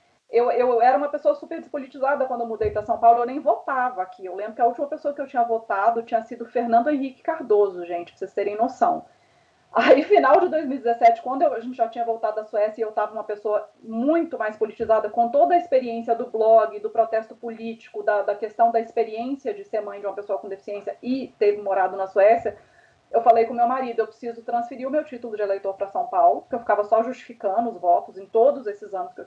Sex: female